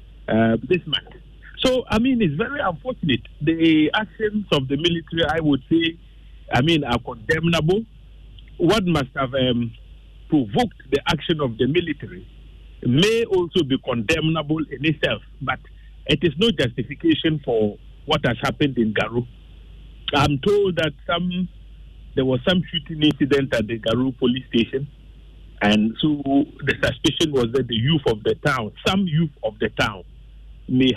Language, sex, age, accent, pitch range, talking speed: English, male, 50-69, Nigerian, 130-180 Hz, 155 wpm